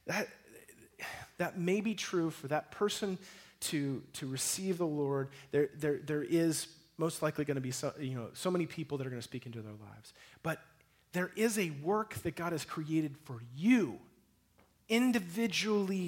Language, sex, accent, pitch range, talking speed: English, male, American, 145-200 Hz, 170 wpm